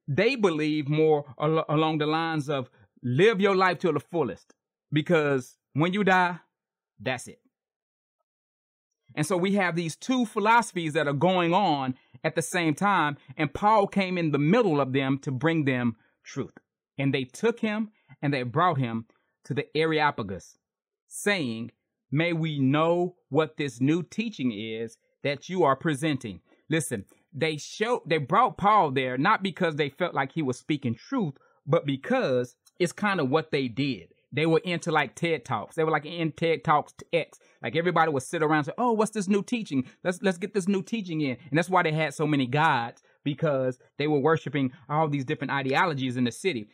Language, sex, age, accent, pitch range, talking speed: English, male, 30-49, American, 135-180 Hz, 190 wpm